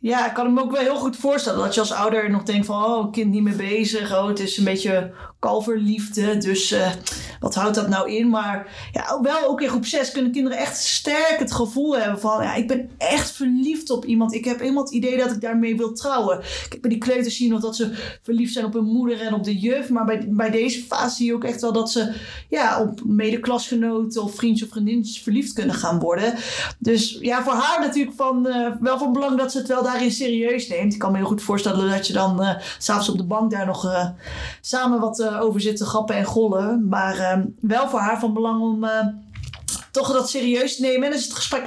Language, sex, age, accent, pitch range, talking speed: Dutch, female, 30-49, Dutch, 210-255 Hz, 240 wpm